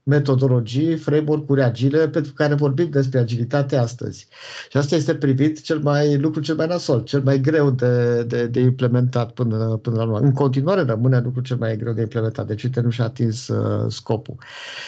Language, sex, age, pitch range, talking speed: Romanian, male, 50-69, 125-145 Hz, 180 wpm